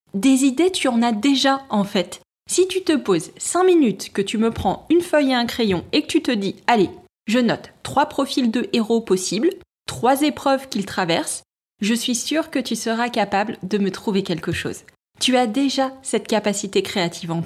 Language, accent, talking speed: French, French, 210 wpm